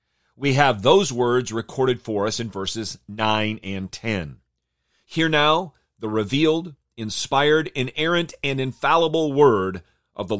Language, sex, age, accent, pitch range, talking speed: English, male, 40-59, American, 110-150 Hz, 135 wpm